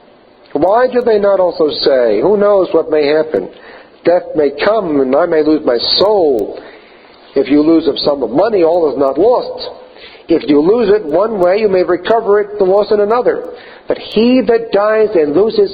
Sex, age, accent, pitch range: male, 50-69, American, 165-235 Hz